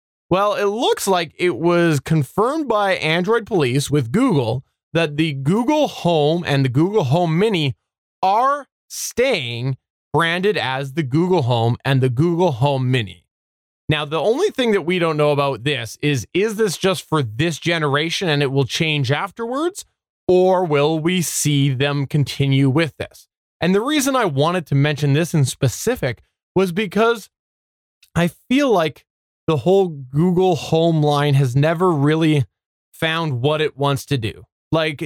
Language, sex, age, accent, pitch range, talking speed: English, male, 20-39, American, 130-175 Hz, 160 wpm